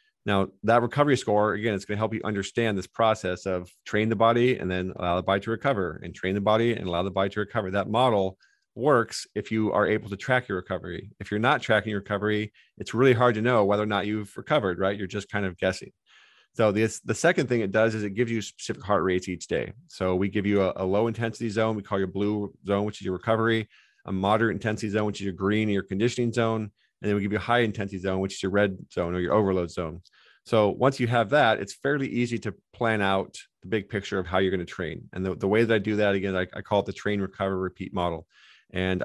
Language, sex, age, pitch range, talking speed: English, male, 40-59, 95-115 Hz, 260 wpm